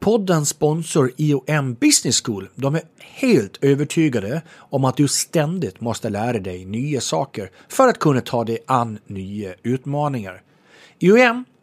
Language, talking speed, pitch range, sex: English, 140 wpm, 105-155 Hz, male